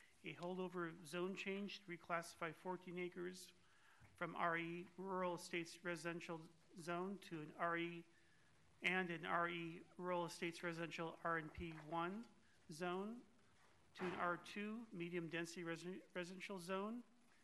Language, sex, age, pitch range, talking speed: English, male, 40-59, 165-185 Hz, 115 wpm